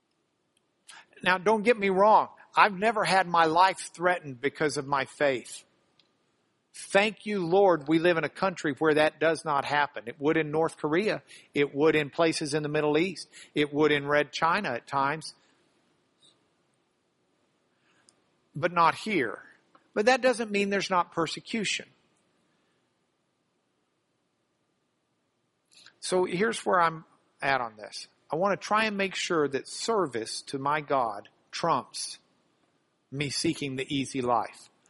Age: 50-69